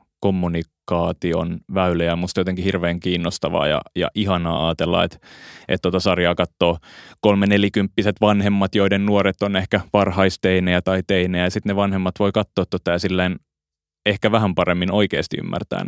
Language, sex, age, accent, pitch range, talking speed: Finnish, male, 20-39, native, 85-100 Hz, 145 wpm